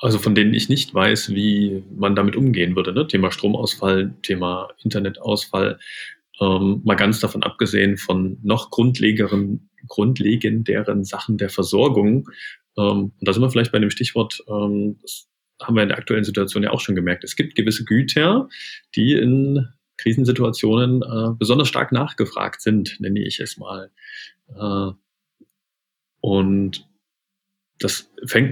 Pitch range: 100-120 Hz